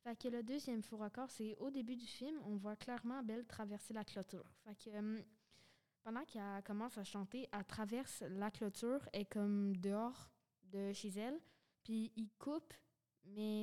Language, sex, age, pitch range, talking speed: French, female, 20-39, 200-235 Hz, 175 wpm